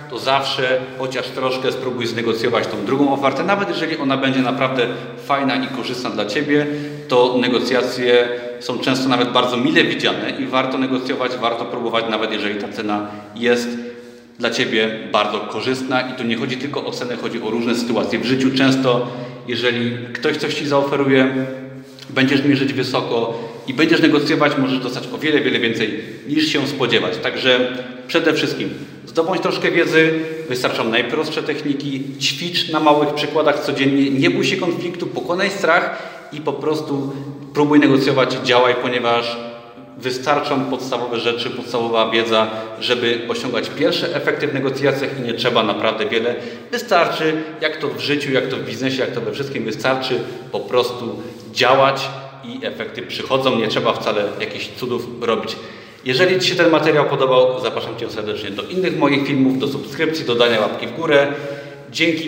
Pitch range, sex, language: 120-145 Hz, male, Polish